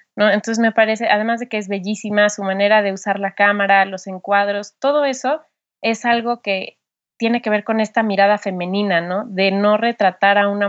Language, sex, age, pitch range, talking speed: Spanish, female, 20-39, 195-215 Hz, 195 wpm